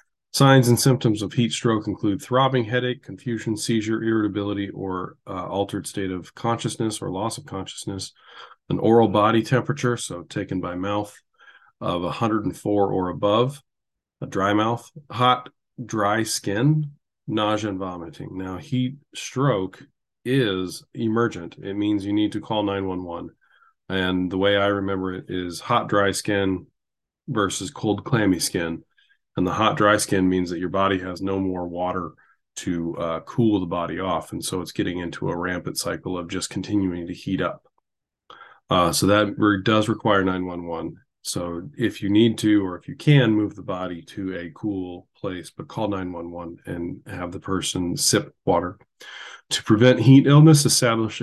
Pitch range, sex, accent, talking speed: 95-115 Hz, male, American, 160 wpm